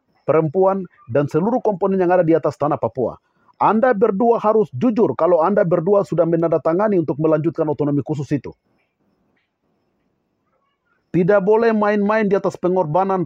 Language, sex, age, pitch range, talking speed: Malay, male, 50-69, 155-195 Hz, 135 wpm